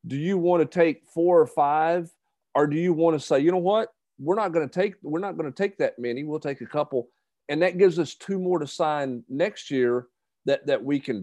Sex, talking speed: male, 250 wpm